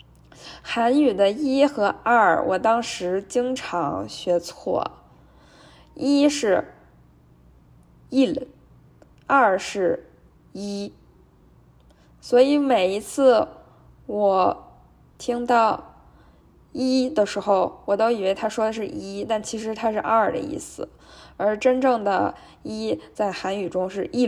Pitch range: 185-240 Hz